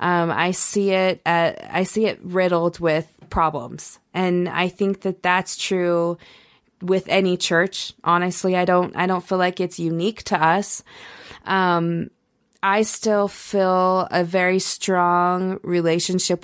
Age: 20-39